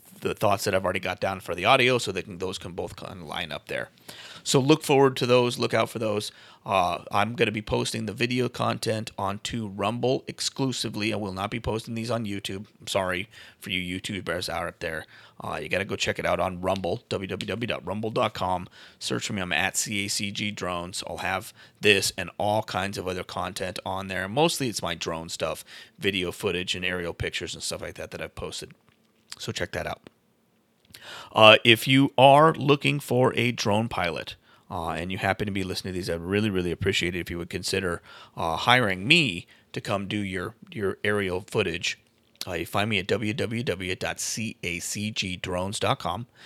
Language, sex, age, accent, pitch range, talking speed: English, male, 30-49, American, 95-115 Hz, 190 wpm